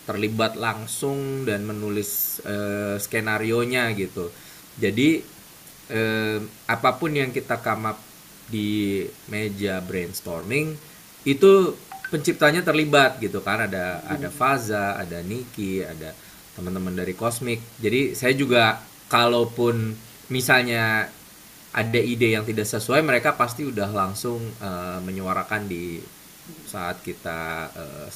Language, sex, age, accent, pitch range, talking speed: Indonesian, male, 20-39, native, 95-120 Hz, 105 wpm